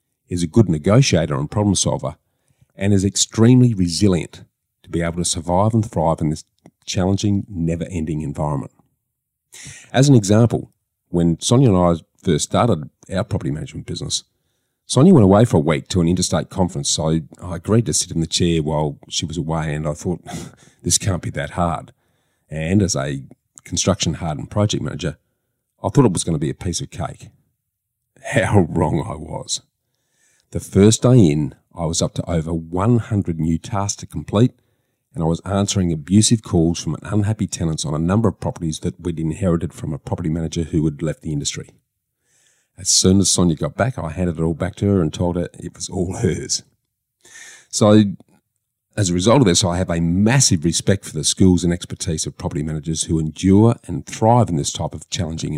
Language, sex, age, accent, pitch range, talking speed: English, male, 40-59, Australian, 80-105 Hz, 190 wpm